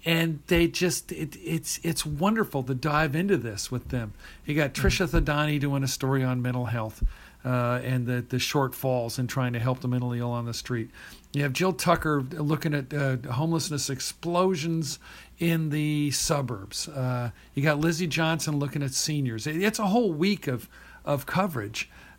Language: English